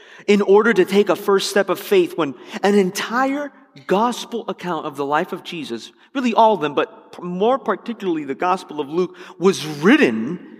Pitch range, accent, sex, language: 155-215 Hz, American, male, English